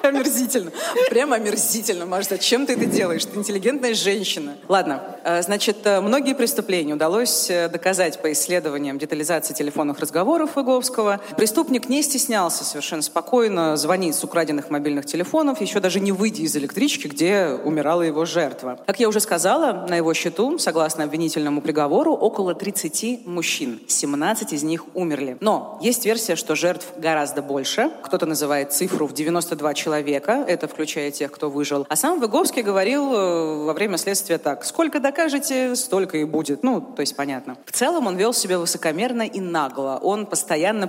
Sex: female